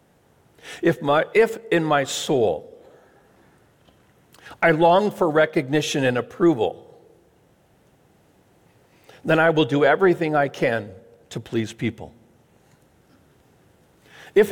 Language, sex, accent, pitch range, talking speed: English, male, American, 130-170 Hz, 90 wpm